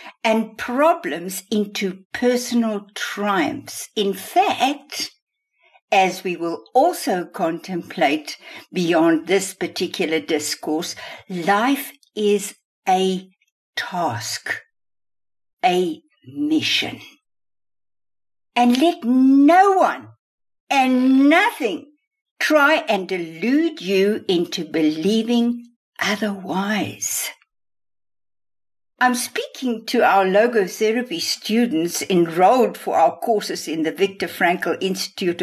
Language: English